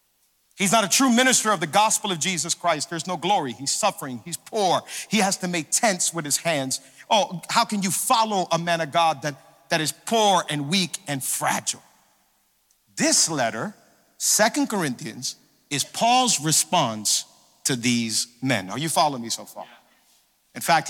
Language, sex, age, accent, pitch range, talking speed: English, male, 50-69, American, 140-190 Hz, 175 wpm